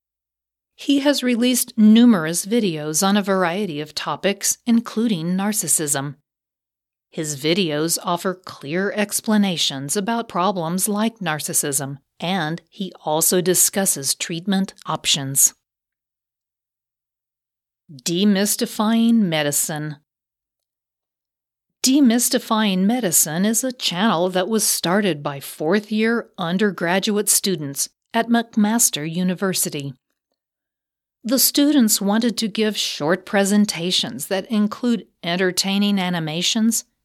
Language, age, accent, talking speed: English, 40-59, American, 90 wpm